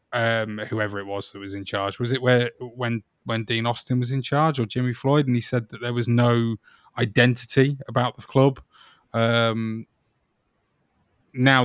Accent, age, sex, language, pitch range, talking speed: British, 20-39, male, English, 110-135 Hz, 175 wpm